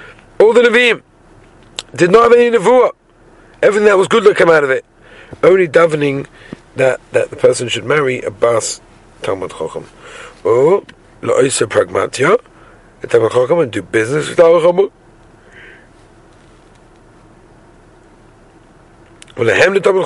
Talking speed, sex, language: 125 wpm, male, English